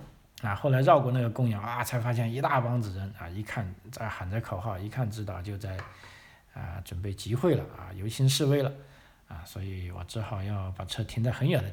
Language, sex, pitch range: Chinese, male, 95-130 Hz